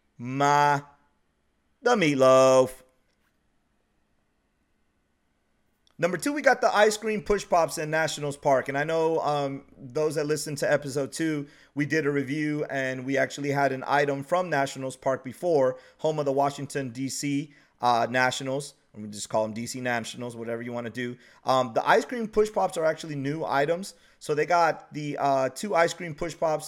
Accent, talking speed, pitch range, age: American, 175 wpm, 120-145 Hz, 30-49